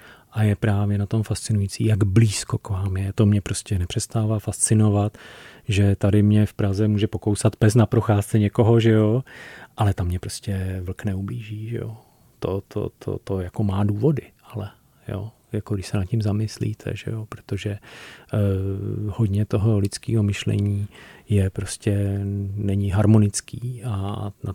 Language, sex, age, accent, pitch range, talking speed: Czech, male, 30-49, native, 100-115 Hz, 160 wpm